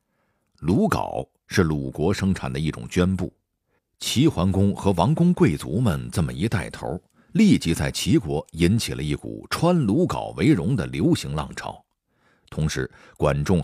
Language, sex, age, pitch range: Chinese, male, 50-69, 70-110 Hz